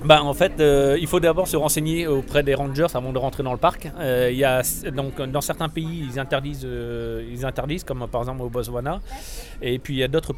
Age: 30-49